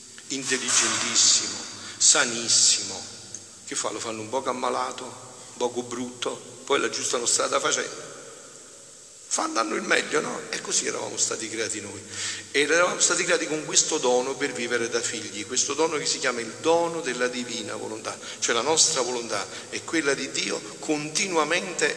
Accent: native